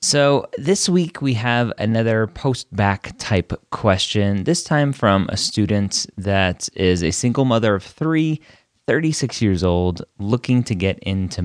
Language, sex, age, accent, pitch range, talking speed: English, male, 30-49, American, 85-110 Hz, 145 wpm